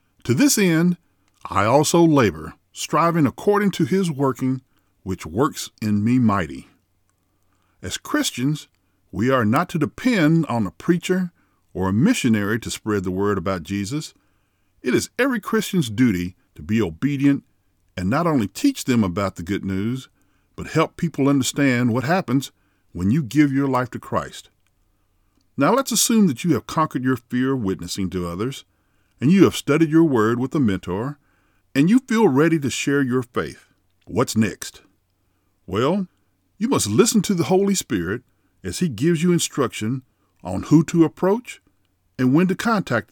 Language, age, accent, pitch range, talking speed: English, 50-69, American, 100-160 Hz, 165 wpm